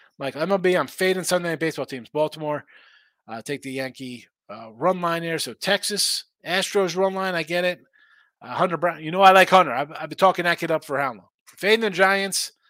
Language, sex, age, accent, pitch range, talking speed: English, male, 30-49, American, 150-205 Hz, 230 wpm